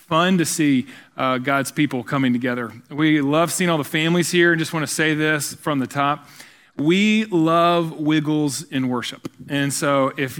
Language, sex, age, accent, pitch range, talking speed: English, male, 40-59, American, 145-185 Hz, 185 wpm